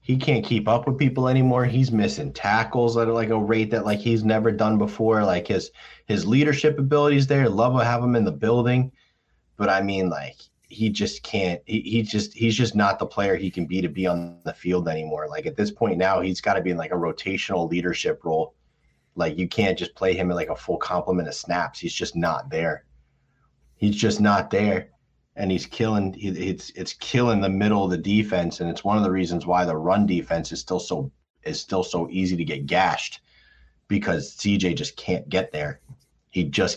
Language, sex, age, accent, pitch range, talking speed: English, male, 30-49, American, 85-115 Hz, 215 wpm